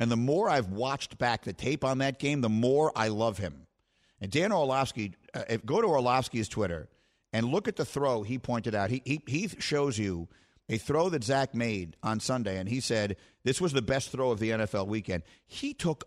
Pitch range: 105-140 Hz